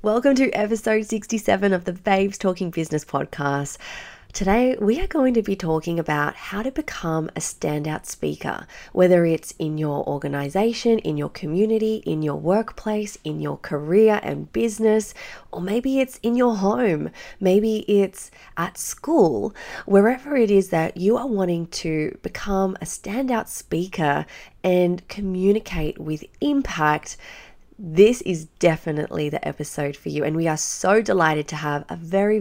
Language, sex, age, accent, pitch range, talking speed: English, female, 30-49, Australian, 150-215 Hz, 150 wpm